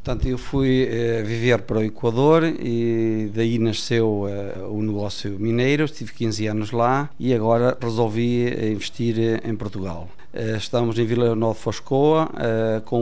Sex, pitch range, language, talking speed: male, 105-125 Hz, Portuguese, 135 wpm